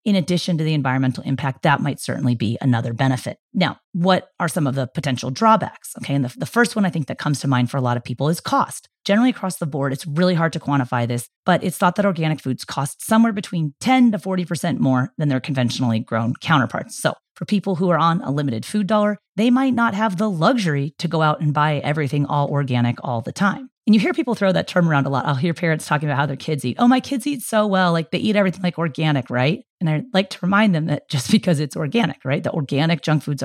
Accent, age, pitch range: American, 30-49, 145-220 Hz